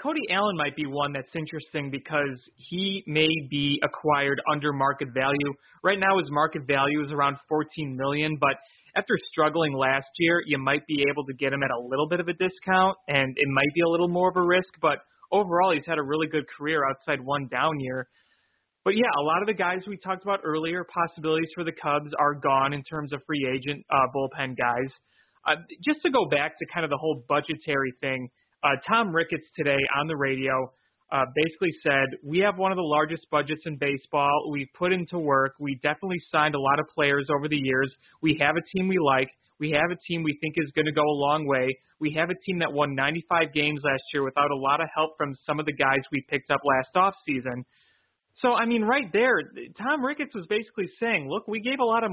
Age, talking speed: 30-49, 225 wpm